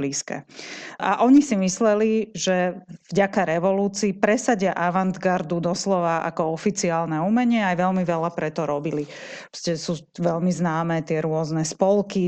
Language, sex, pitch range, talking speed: Slovak, female, 170-195 Hz, 135 wpm